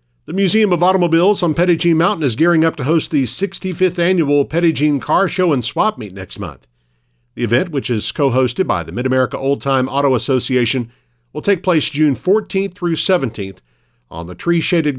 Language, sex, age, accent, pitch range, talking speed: English, male, 50-69, American, 115-160 Hz, 185 wpm